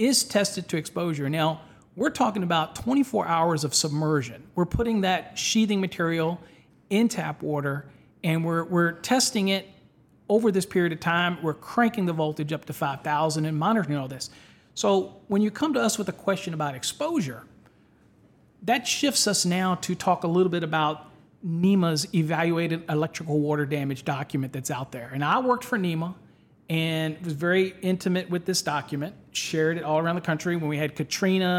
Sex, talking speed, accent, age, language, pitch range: male, 175 wpm, American, 40-59, English, 155-190 Hz